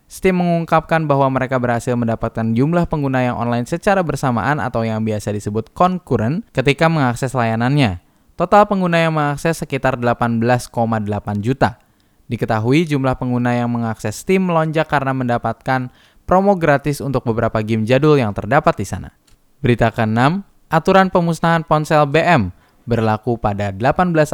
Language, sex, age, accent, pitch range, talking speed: Indonesian, male, 10-29, native, 110-155 Hz, 135 wpm